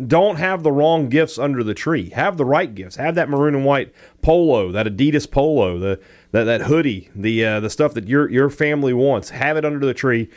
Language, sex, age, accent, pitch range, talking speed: English, male, 30-49, American, 110-155 Hz, 225 wpm